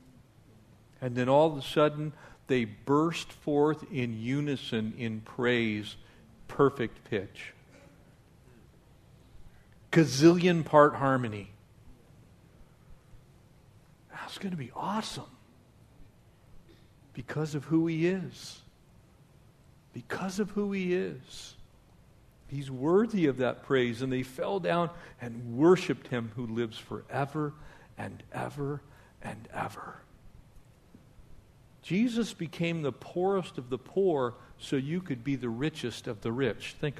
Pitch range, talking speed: 115-155 Hz, 110 wpm